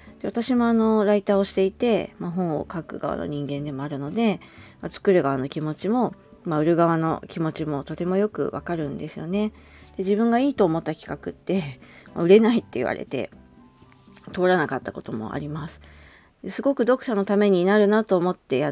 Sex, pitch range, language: female, 150-205 Hz, Japanese